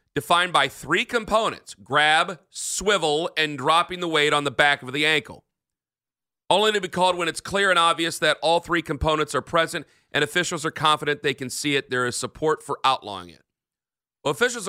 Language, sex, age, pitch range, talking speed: English, male, 40-59, 140-175 Hz, 190 wpm